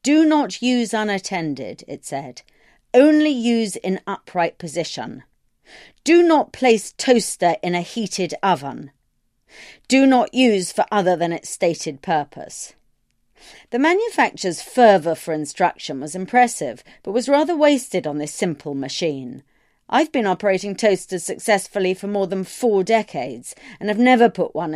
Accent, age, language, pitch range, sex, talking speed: British, 40-59, English, 160-235 Hz, female, 140 wpm